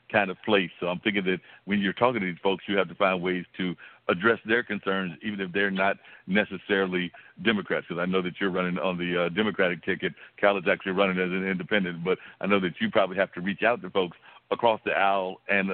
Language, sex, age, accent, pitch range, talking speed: English, male, 60-79, American, 90-100 Hz, 235 wpm